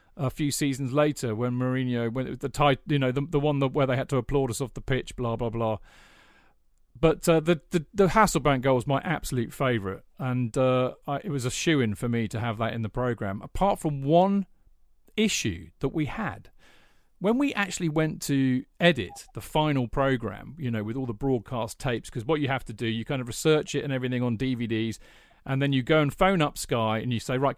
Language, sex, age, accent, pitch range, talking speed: English, male, 40-59, British, 125-160 Hz, 230 wpm